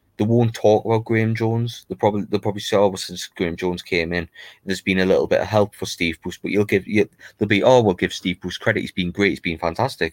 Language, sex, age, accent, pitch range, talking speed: English, male, 20-39, British, 90-105 Hz, 275 wpm